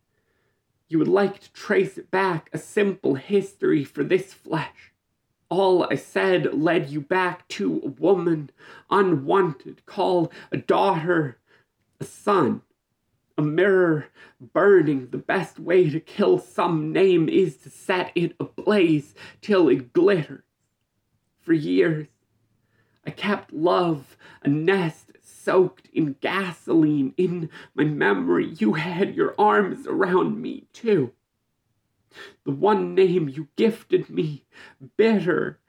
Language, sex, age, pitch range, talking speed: English, male, 30-49, 150-200 Hz, 125 wpm